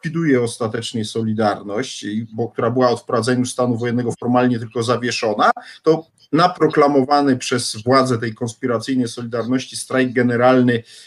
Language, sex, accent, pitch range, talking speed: Polish, male, native, 115-135 Hz, 120 wpm